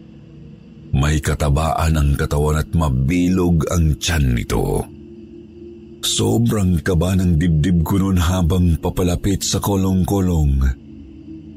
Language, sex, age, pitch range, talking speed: Filipino, male, 50-69, 85-130 Hz, 95 wpm